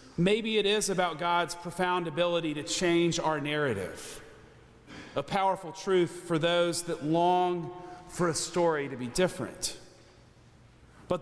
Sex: male